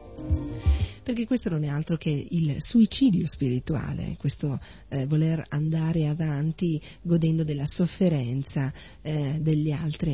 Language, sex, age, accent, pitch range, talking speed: Italian, female, 40-59, native, 135-165 Hz, 120 wpm